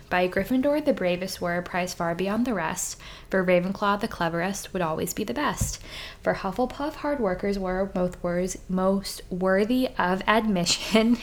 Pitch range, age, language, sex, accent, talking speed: 180-235 Hz, 10-29, English, female, American, 160 wpm